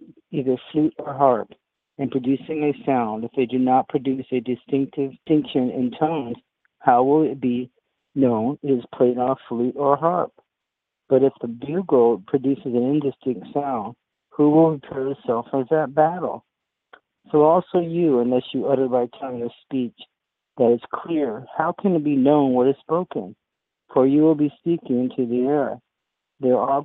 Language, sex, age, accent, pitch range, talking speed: English, male, 50-69, American, 125-145 Hz, 170 wpm